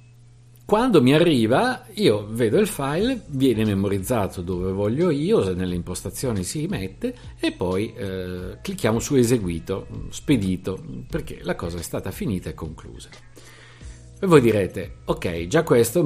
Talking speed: 140 wpm